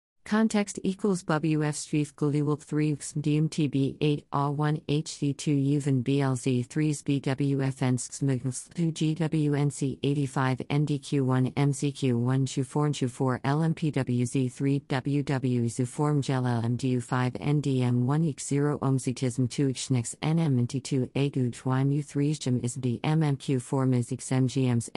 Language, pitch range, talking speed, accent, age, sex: English, 130-150 Hz, 120 wpm, American, 50-69, female